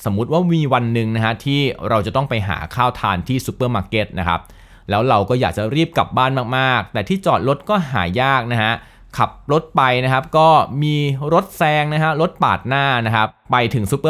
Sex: male